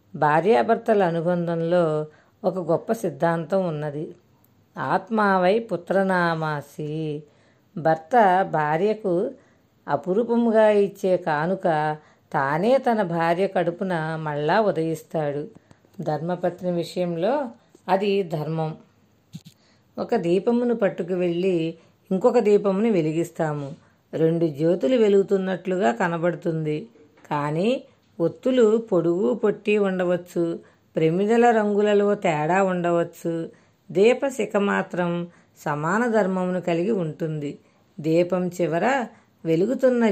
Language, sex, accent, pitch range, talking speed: Telugu, female, native, 165-205 Hz, 80 wpm